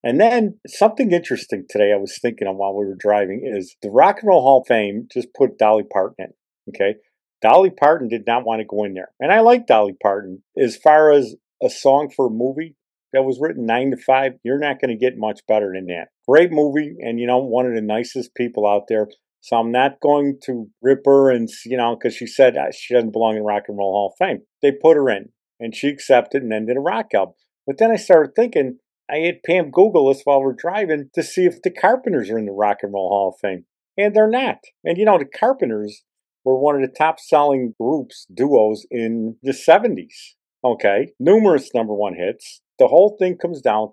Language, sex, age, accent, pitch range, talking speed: English, male, 50-69, American, 110-150 Hz, 230 wpm